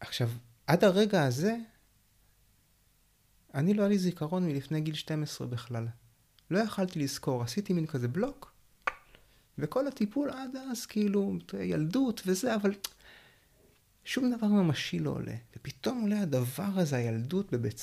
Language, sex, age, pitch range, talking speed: Hebrew, male, 30-49, 115-170 Hz, 130 wpm